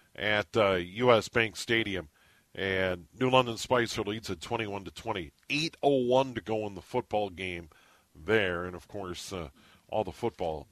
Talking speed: 150 wpm